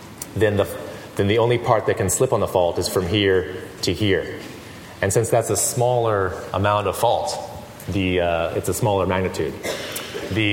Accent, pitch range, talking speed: American, 90-110 Hz, 180 wpm